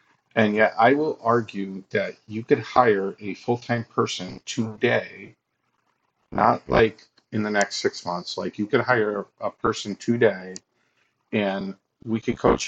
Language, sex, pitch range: English, male, 100-120 Hz